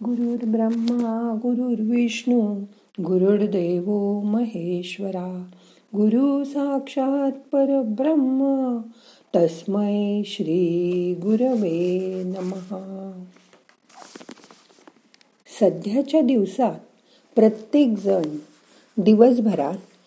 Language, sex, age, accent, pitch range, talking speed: Marathi, female, 50-69, native, 185-255 Hz, 50 wpm